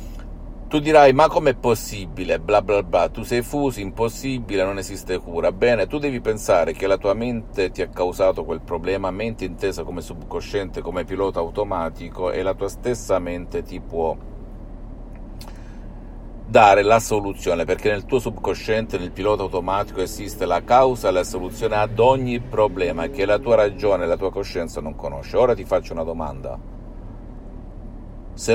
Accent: native